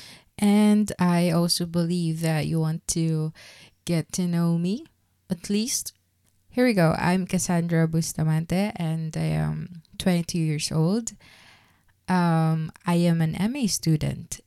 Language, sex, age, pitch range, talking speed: English, female, 20-39, 160-185 Hz, 135 wpm